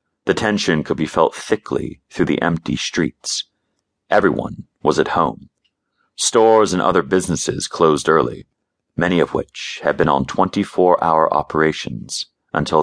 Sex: male